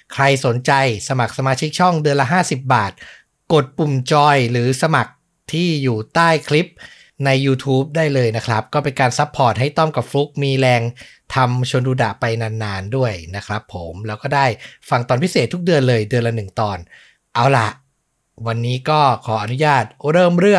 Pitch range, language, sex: 120-150 Hz, Thai, male